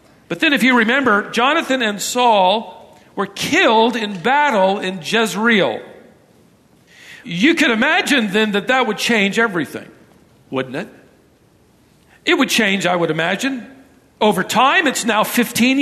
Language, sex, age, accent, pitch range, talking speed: English, male, 50-69, American, 200-255 Hz, 135 wpm